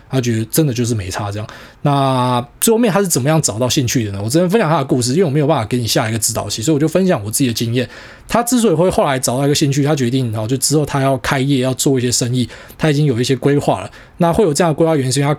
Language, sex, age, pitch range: Chinese, male, 20-39, 125-165 Hz